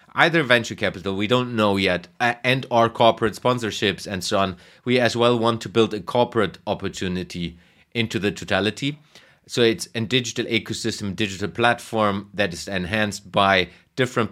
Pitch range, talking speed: 95-115 Hz, 160 wpm